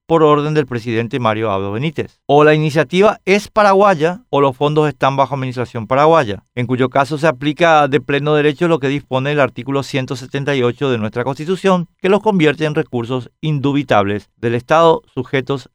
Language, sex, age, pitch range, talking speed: Spanish, male, 50-69, 125-160 Hz, 170 wpm